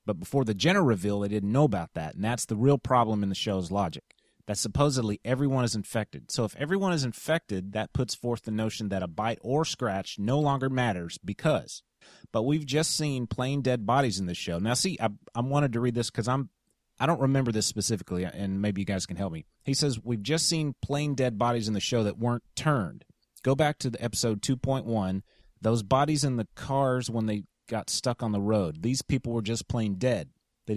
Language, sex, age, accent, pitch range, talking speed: English, male, 30-49, American, 105-135 Hz, 220 wpm